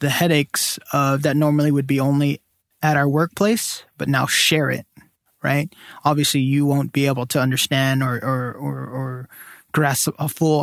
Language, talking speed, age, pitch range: English, 170 wpm, 20-39, 135-155 Hz